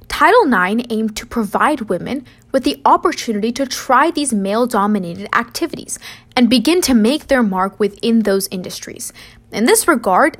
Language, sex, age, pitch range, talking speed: English, female, 20-39, 210-285 Hz, 150 wpm